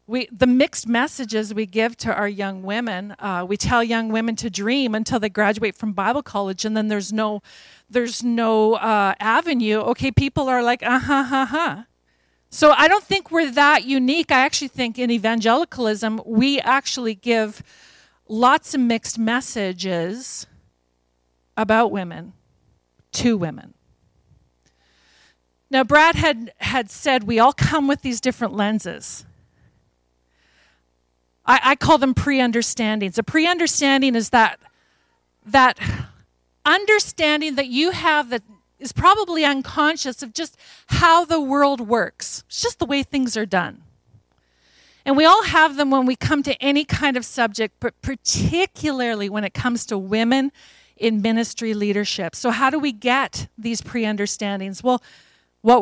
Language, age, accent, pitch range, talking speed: English, 40-59, American, 205-275 Hz, 145 wpm